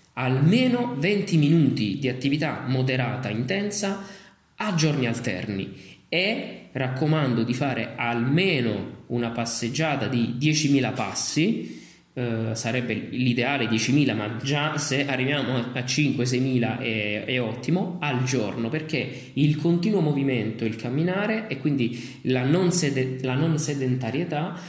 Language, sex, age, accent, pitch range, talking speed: Italian, male, 20-39, native, 120-160 Hz, 120 wpm